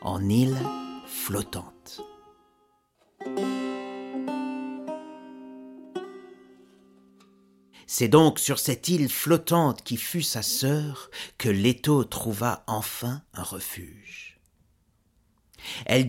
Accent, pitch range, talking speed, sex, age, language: French, 100-170 Hz, 75 wpm, male, 50-69, French